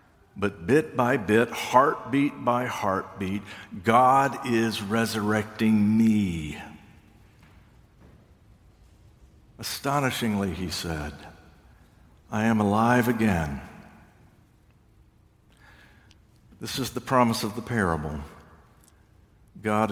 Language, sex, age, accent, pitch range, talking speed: English, male, 60-79, American, 105-140 Hz, 80 wpm